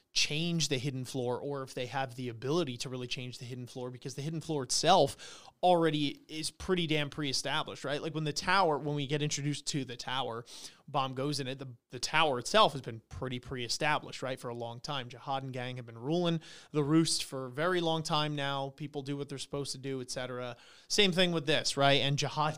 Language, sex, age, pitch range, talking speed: English, male, 30-49, 130-155 Hz, 225 wpm